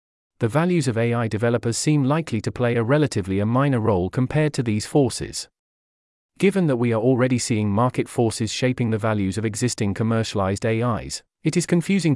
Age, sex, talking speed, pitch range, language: 40-59, male, 180 wpm, 110-140 Hz, English